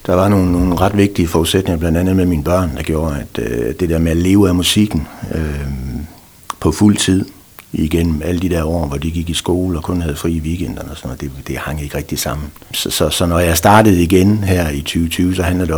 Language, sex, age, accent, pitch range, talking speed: Danish, male, 60-79, native, 80-100 Hz, 240 wpm